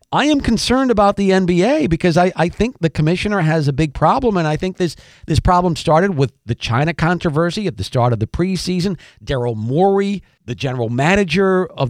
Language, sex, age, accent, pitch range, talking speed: English, male, 50-69, American, 130-180 Hz, 195 wpm